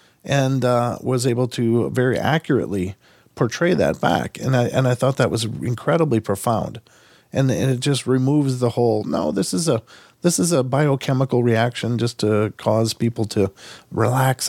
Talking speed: 170 wpm